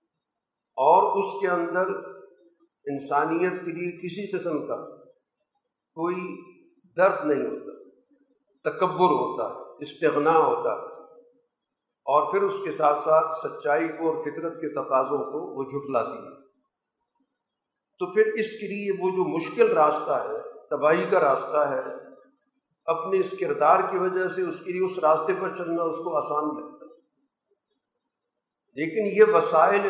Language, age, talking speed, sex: Urdu, 50-69, 140 wpm, male